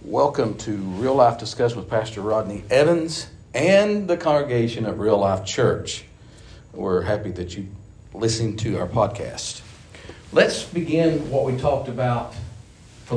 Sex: male